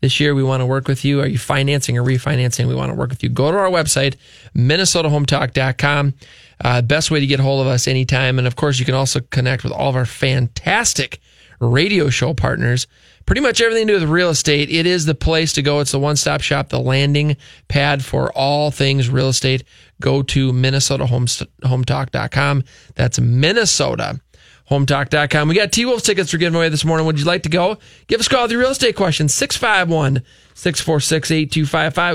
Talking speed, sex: 195 wpm, male